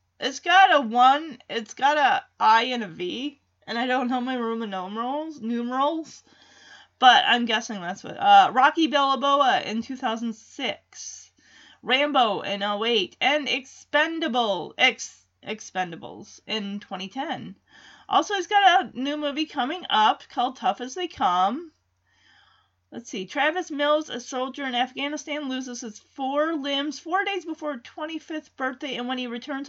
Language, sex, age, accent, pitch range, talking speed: English, female, 30-49, American, 215-295 Hz, 150 wpm